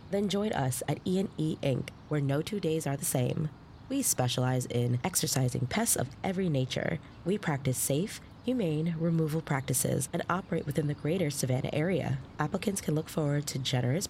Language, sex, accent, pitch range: English, female, American, 130-170 Hz